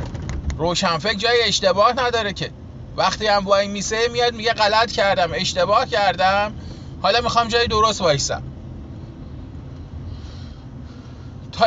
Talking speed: 115 wpm